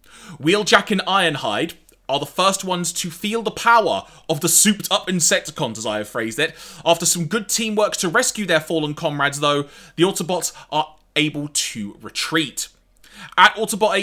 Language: English